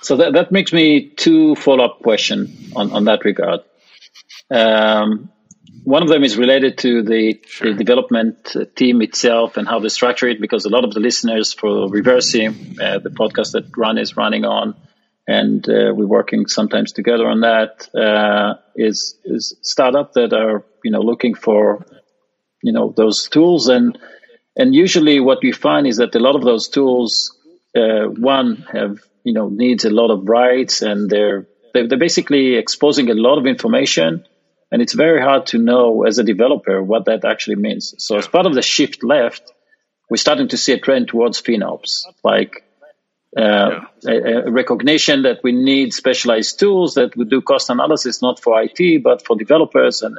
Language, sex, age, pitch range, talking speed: Hebrew, male, 40-59, 110-150 Hz, 180 wpm